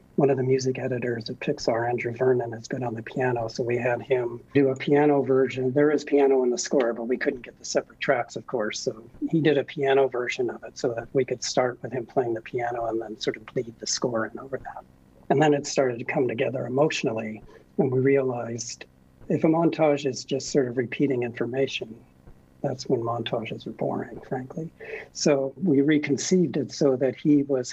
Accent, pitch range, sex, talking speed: American, 120-140 Hz, male, 215 wpm